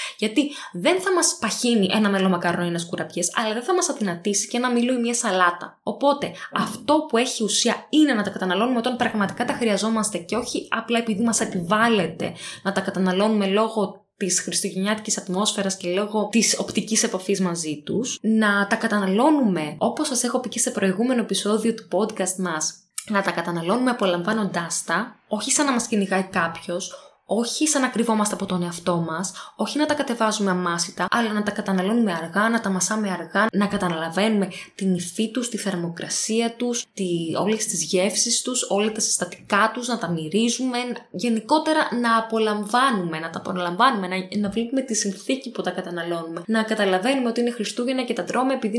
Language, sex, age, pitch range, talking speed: Greek, female, 20-39, 185-240 Hz, 170 wpm